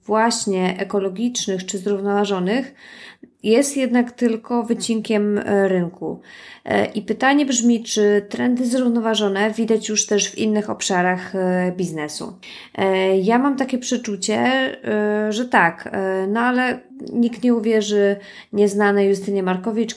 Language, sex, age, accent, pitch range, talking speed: Polish, female, 20-39, native, 190-230 Hz, 110 wpm